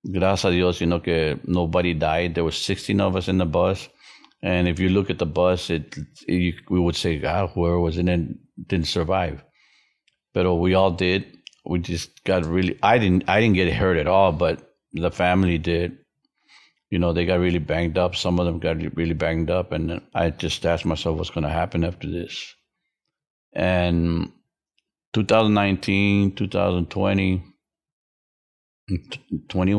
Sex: male